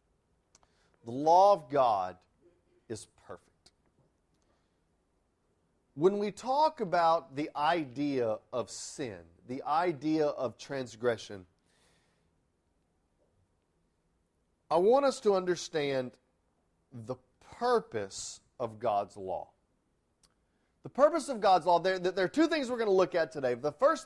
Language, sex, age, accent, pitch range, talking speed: English, male, 40-59, American, 125-190 Hz, 115 wpm